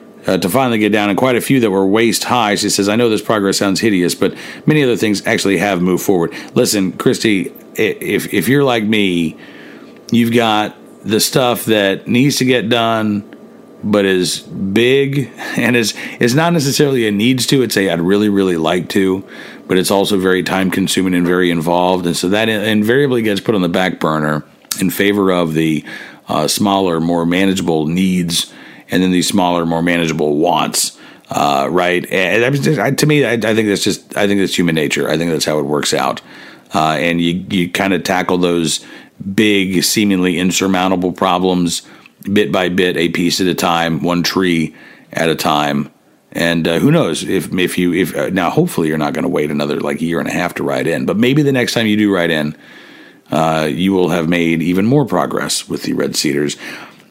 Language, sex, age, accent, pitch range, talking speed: English, male, 50-69, American, 85-105 Hz, 190 wpm